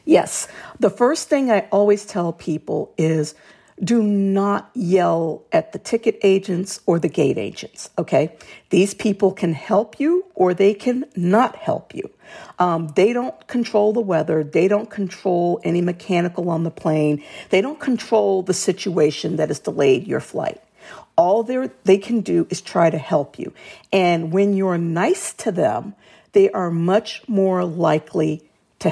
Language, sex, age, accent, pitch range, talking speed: English, female, 50-69, American, 160-215 Hz, 160 wpm